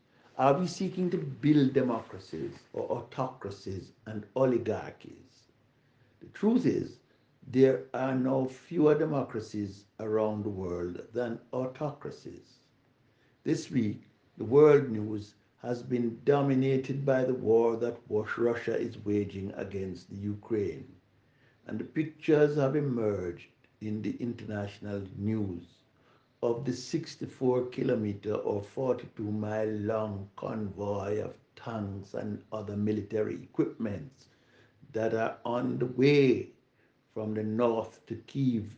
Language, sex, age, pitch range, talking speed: English, male, 60-79, 105-130 Hz, 115 wpm